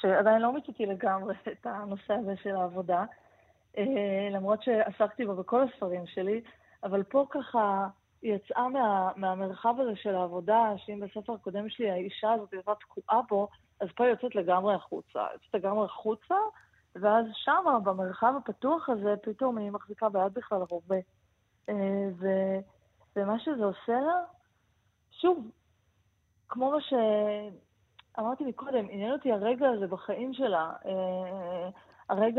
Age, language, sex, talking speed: 20-39, Hebrew, female, 140 wpm